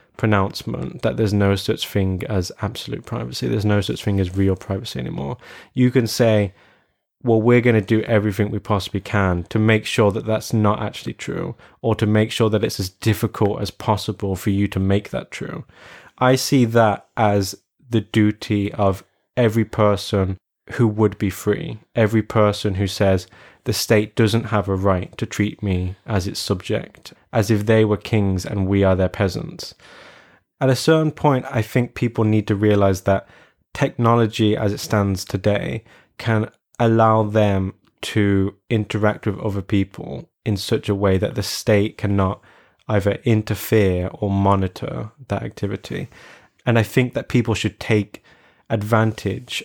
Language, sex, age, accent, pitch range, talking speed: English, male, 20-39, British, 100-115 Hz, 165 wpm